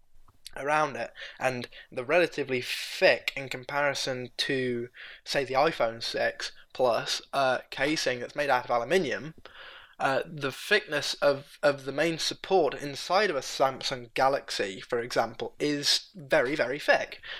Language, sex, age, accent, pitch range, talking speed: English, male, 10-29, British, 130-190 Hz, 140 wpm